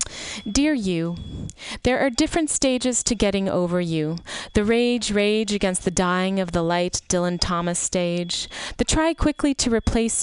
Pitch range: 175-235 Hz